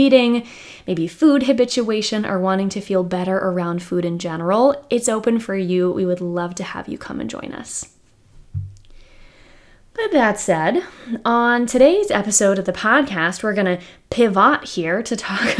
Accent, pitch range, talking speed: American, 180-240 Hz, 160 wpm